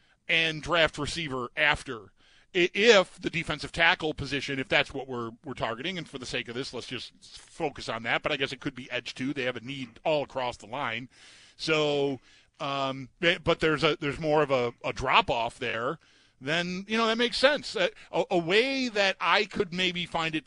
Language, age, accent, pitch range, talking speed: English, 40-59, American, 140-190 Hz, 200 wpm